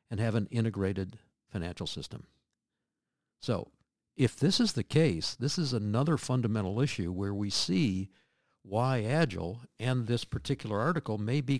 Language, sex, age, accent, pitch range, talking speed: English, male, 60-79, American, 90-125 Hz, 145 wpm